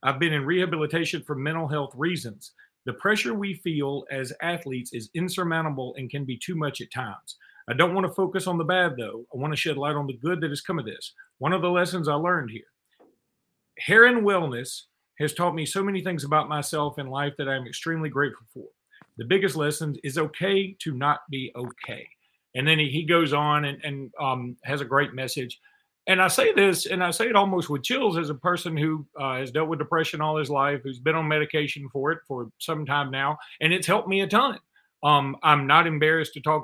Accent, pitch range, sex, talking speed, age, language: American, 140-175 Hz, male, 220 wpm, 40-59, English